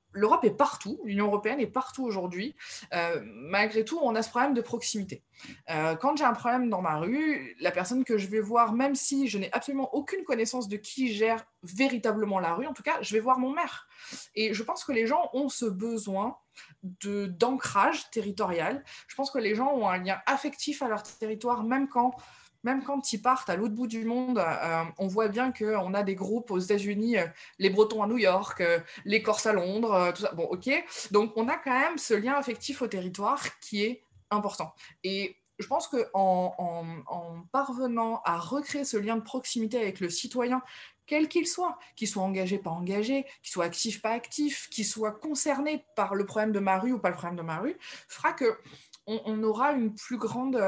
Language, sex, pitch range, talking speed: French, female, 200-260 Hz, 210 wpm